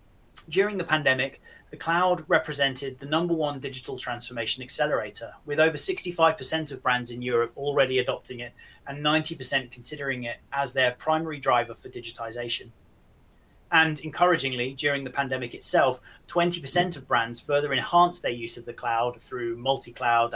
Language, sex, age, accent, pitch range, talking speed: English, male, 30-49, British, 120-160 Hz, 145 wpm